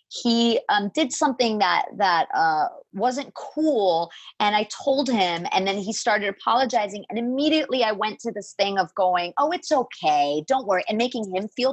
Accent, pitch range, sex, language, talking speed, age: American, 190-265 Hz, female, English, 185 wpm, 30-49